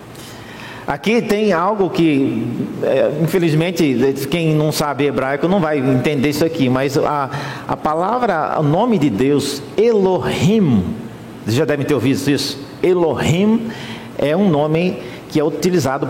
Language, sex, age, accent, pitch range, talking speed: Portuguese, male, 50-69, Brazilian, 140-190 Hz, 135 wpm